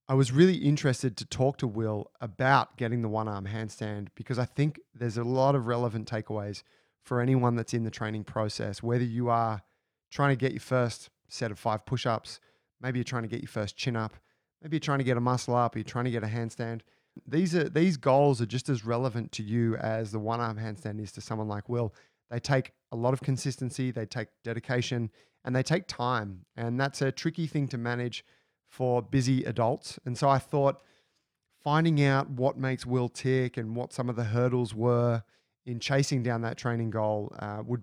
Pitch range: 110-130 Hz